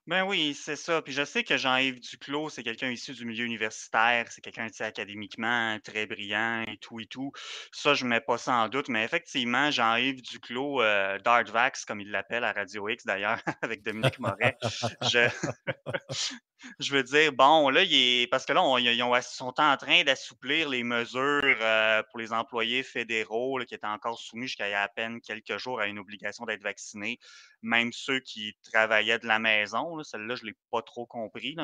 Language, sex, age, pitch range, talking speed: French, male, 20-39, 115-130 Hz, 205 wpm